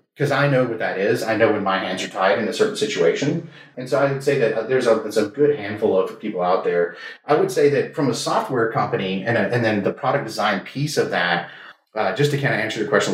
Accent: American